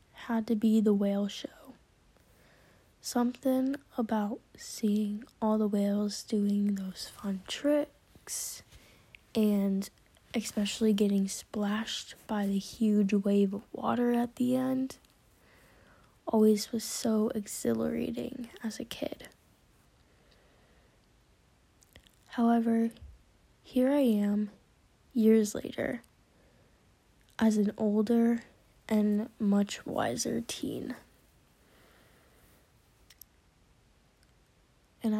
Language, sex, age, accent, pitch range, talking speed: English, female, 10-29, American, 205-240 Hz, 85 wpm